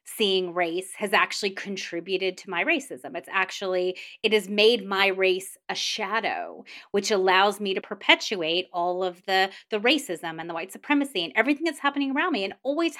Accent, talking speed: American, 180 wpm